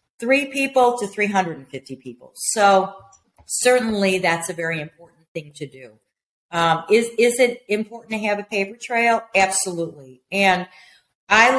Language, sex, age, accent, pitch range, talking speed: English, female, 40-59, American, 175-220 Hz, 140 wpm